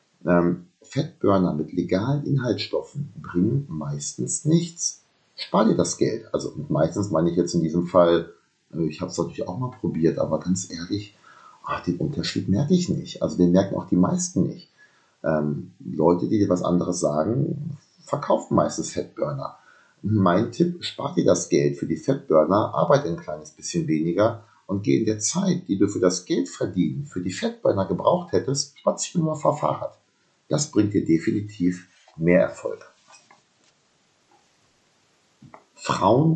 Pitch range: 85-140 Hz